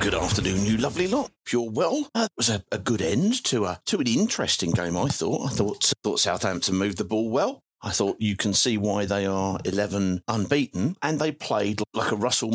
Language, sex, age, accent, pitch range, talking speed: English, male, 40-59, British, 105-145 Hz, 215 wpm